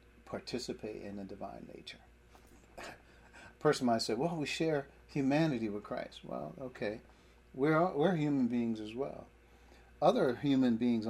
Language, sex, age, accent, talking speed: English, male, 40-59, American, 145 wpm